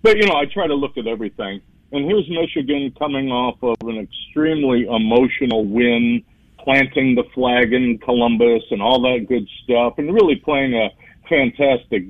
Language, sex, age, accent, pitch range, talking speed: English, male, 50-69, American, 120-145 Hz, 170 wpm